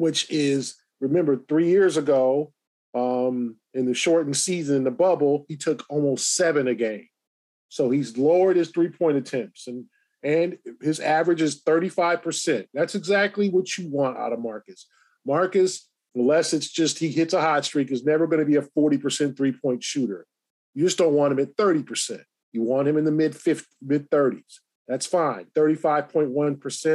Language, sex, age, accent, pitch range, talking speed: English, male, 40-59, American, 140-180 Hz, 165 wpm